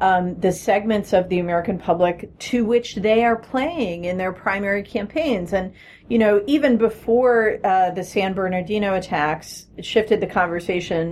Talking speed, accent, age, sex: 155 wpm, American, 40-59, female